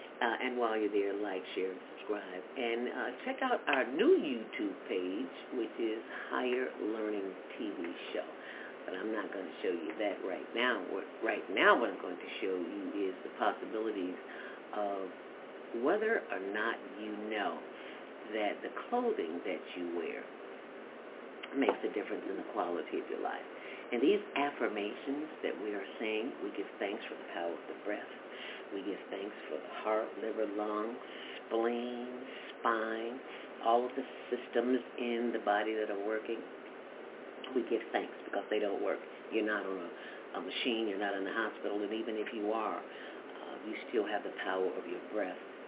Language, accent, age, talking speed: English, American, 50-69, 175 wpm